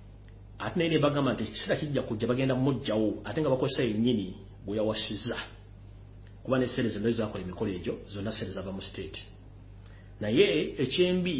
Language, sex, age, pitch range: English, male, 40-59, 100-130 Hz